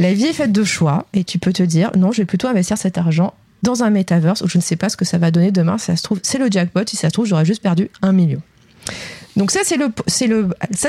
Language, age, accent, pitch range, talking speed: French, 30-49, French, 175-220 Hz, 305 wpm